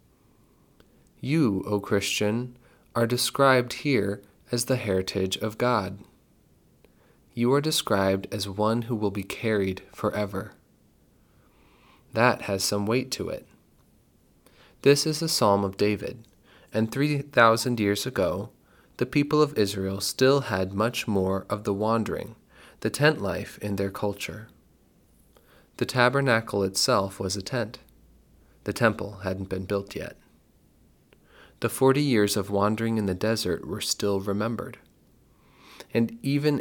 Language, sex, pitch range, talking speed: English, male, 95-120 Hz, 130 wpm